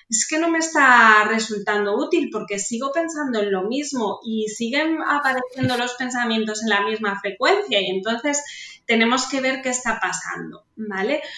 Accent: Spanish